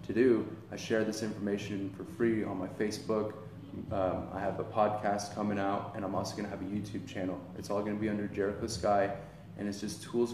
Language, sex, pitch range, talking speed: English, male, 95-110 Hz, 225 wpm